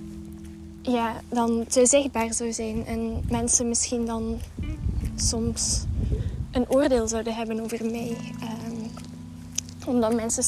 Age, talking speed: 20-39, 115 wpm